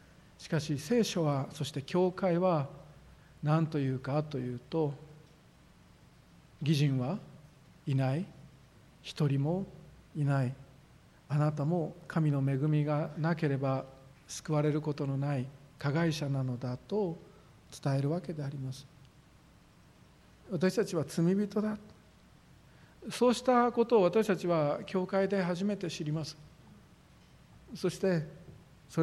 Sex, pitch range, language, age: male, 145-180 Hz, Japanese, 50-69